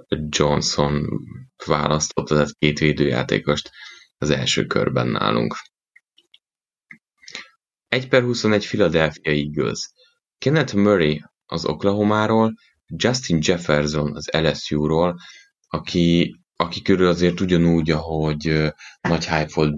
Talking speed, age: 90 wpm, 20-39